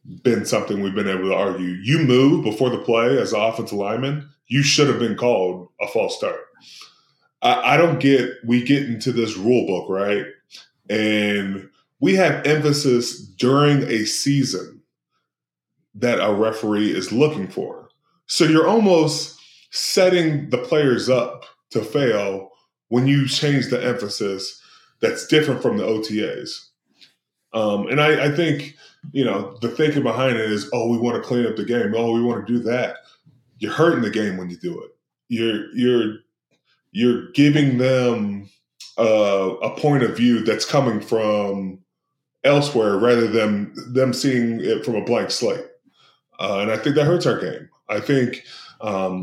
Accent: American